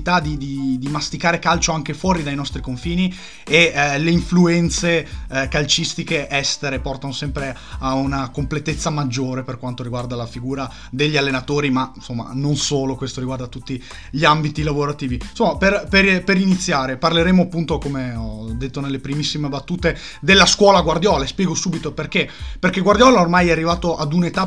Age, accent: 30-49, native